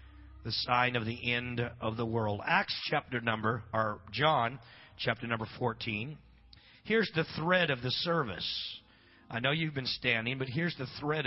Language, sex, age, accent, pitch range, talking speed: English, male, 40-59, American, 110-145 Hz, 165 wpm